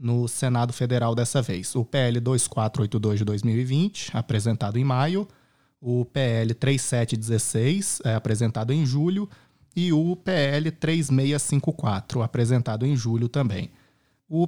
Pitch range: 120-145 Hz